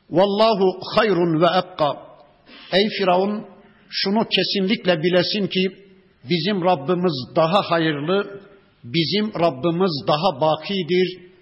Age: 60-79